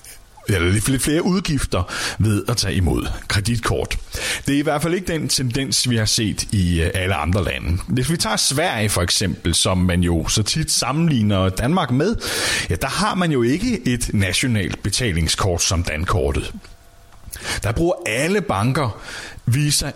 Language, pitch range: Danish, 90-130 Hz